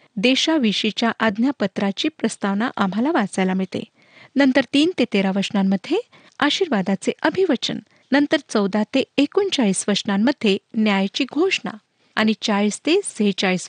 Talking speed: 100 wpm